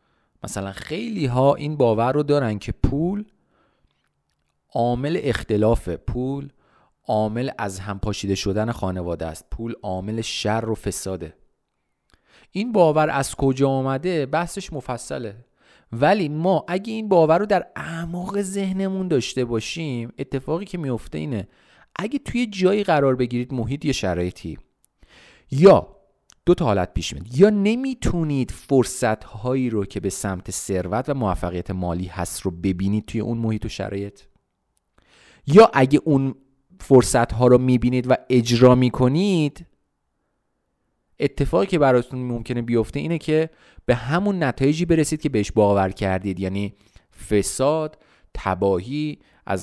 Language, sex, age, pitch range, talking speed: Persian, male, 40-59, 100-150 Hz, 125 wpm